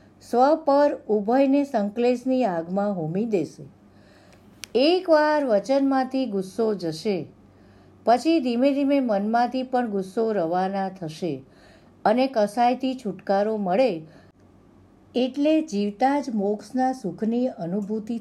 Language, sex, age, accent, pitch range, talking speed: English, female, 50-69, Indian, 200-270 Hz, 105 wpm